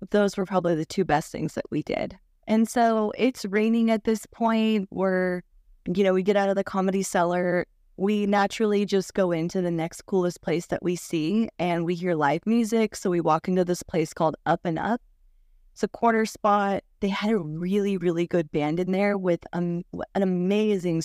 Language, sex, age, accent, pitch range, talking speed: English, female, 20-39, American, 175-210 Hz, 200 wpm